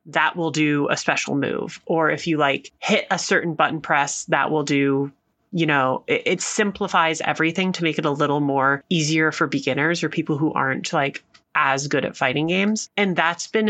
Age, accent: 30-49, American